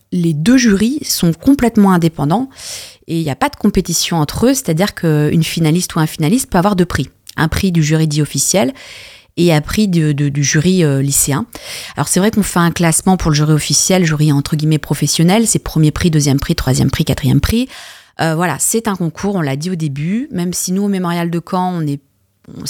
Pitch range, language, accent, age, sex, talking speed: 150-185 Hz, French, French, 30-49, female, 220 wpm